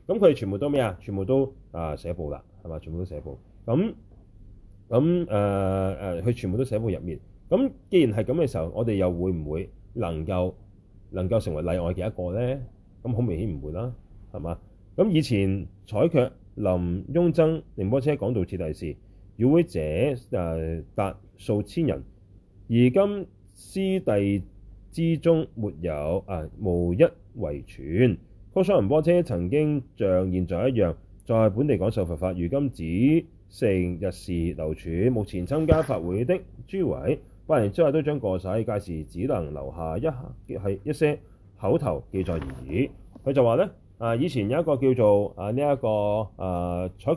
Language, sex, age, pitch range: Chinese, male, 30-49, 90-130 Hz